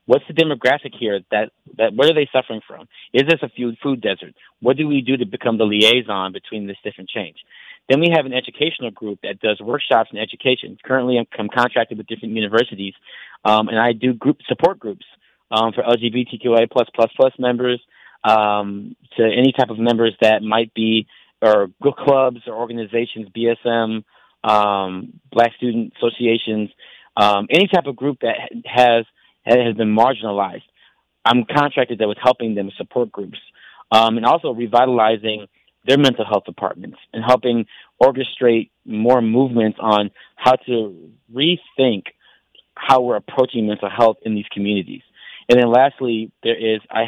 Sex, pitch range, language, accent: male, 110-125 Hz, English, American